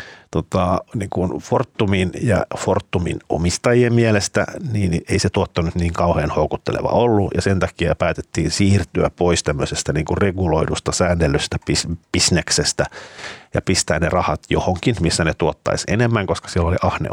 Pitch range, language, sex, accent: 80-100 Hz, Finnish, male, native